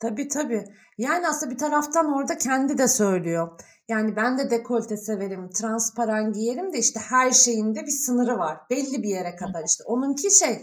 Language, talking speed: Turkish, 180 wpm